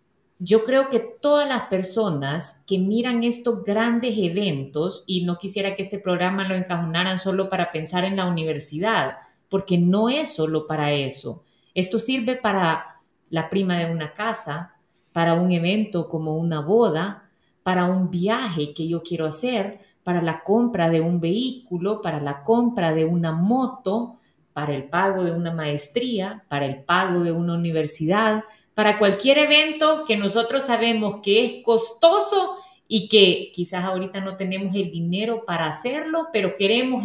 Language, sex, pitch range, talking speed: Spanish, female, 170-230 Hz, 155 wpm